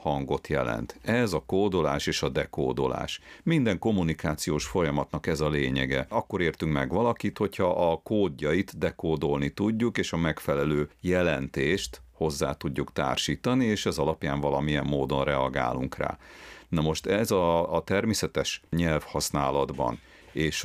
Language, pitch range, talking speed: Hungarian, 75-85 Hz, 130 wpm